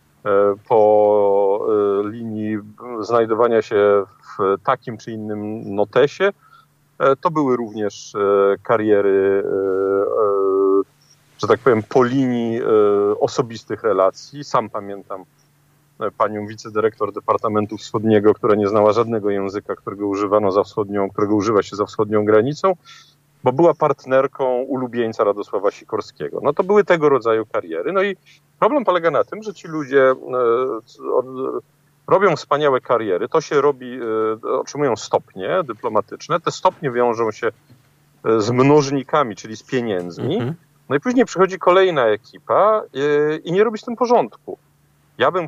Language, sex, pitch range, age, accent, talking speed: Polish, male, 105-175 Hz, 40-59, native, 125 wpm